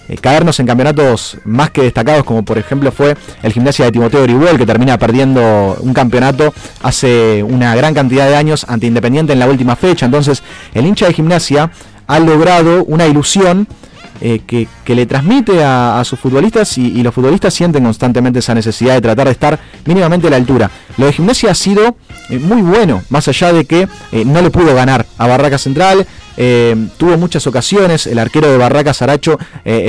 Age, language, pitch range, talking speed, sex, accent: 30-49, Spanish, 120-155 Hz, 195 wpm, male, Argentinian